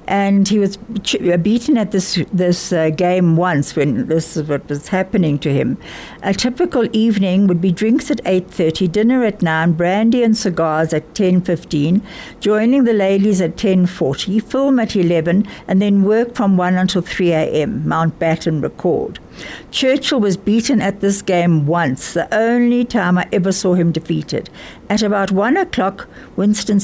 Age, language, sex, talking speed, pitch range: 60-79, English, female, 165 wpm, 175-225 Hz